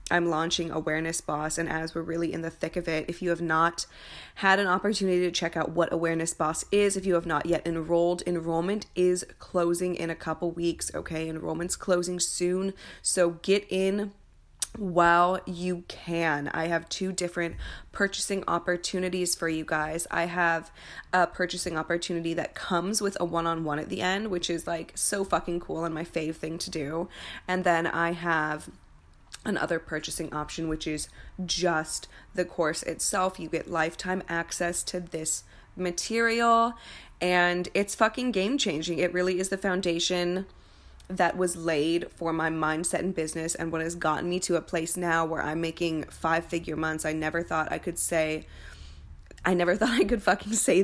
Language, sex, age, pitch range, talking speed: English, female, 20-39, 160-180 Hz, 175 wpm